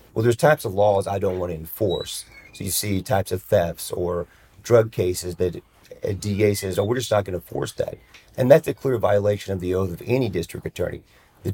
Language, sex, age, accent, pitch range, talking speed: English, male, 40-59, American, 90-105 Hz, 230 wpm